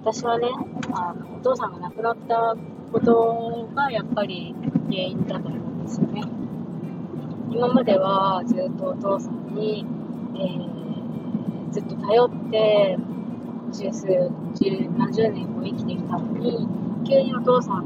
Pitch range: 205-235 Hz